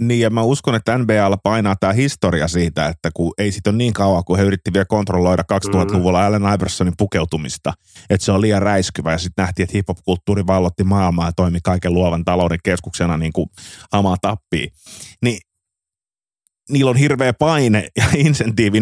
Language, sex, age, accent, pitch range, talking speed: Finnish, male, 20-39, native, 90-110 Hz, 180 wpm